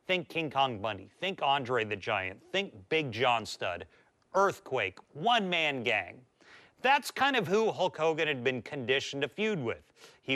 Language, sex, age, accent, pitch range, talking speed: English, male, 40-59, American, 125-180 Hz, 160 wpm